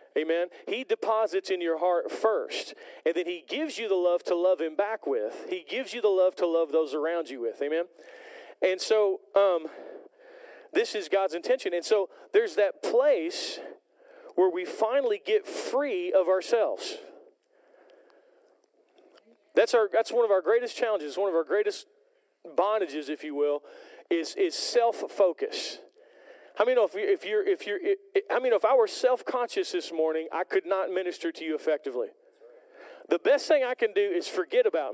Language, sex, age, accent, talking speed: English, male, 40-59, American, 175 wpm